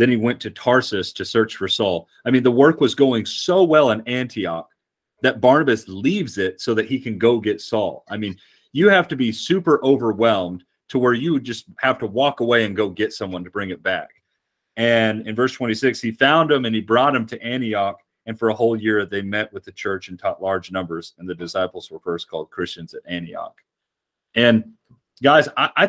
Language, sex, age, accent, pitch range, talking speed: English, male, 30-49, American, 95-115 Hz, 220 wpm